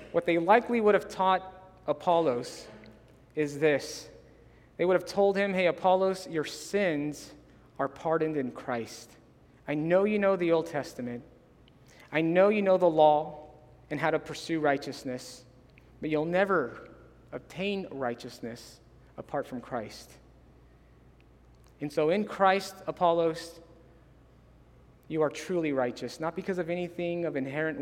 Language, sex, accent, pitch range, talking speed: English, male, American, 130-165 Hz, 135 wpm